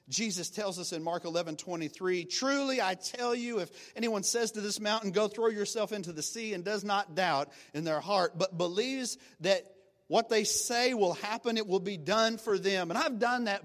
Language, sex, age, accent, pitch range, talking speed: English, male, 40-59, American, 175-245 Hz, 220 wpm